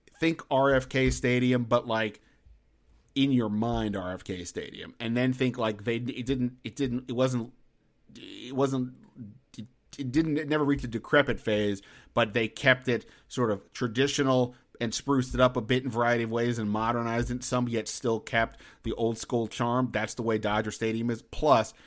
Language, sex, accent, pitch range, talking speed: English, male, American, 110-130 Hz, 185 wpm